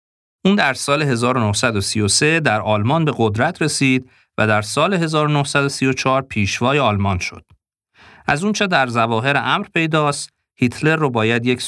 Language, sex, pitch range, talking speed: Persian, male, 105-140 Hz, 135 wpm